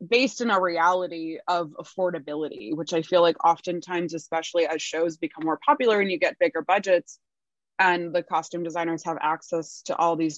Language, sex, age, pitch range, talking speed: English, female, 20-39, 160-190 Hz, 180 wpm